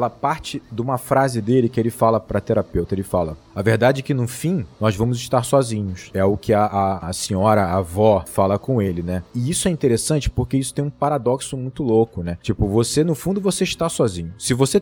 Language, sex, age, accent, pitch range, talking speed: Portuguese, male, 20-39, Brazilian, 110-160 Hz, 225 wpm